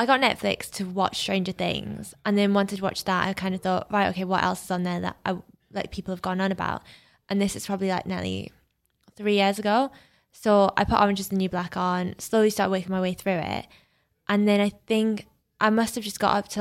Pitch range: 185-215 Hz